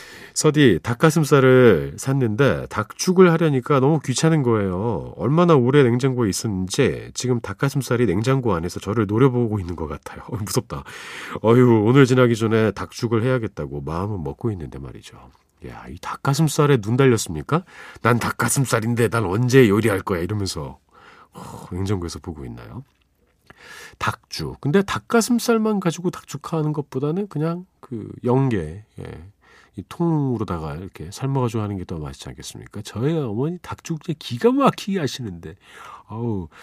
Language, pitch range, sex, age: Korean, 100-150 Hz, male, 40-59